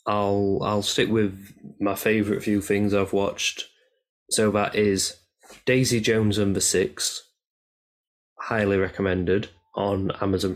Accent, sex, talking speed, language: British, male, 120 wpm, English